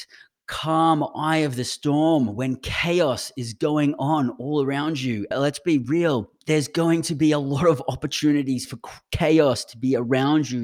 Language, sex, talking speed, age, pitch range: English, male, 170 wpm, 30-49, 125-160 Hz